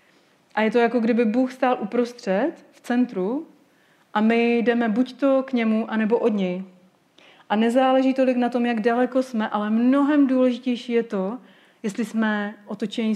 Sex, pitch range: female, 200-245 Hz